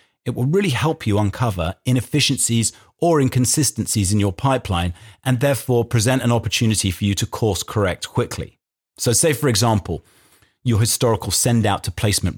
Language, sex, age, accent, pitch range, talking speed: English, male, 40-59, British, 100-130 Hz, 160 wpm